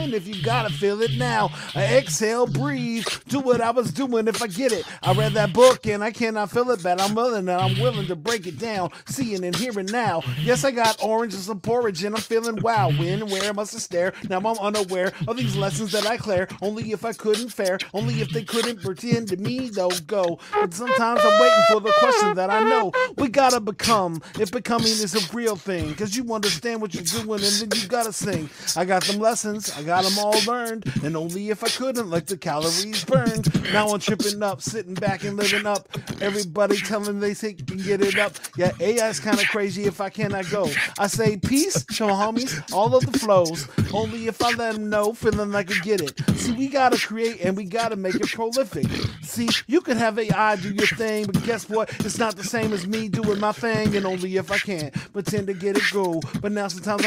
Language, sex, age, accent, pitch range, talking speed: English, male, 40-59, American, 190-225 Hz, 230 wpm